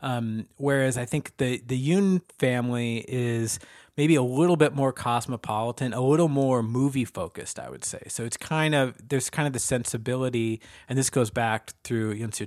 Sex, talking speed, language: male, 190 wpm, English